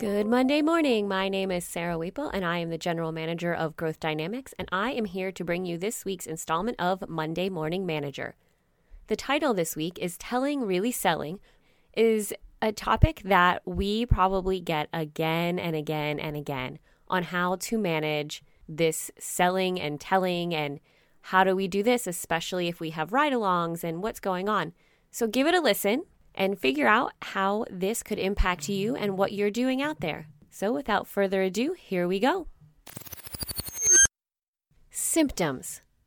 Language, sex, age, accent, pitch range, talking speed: English, female, 20-39, American, 165-215 Hz, 170 wpm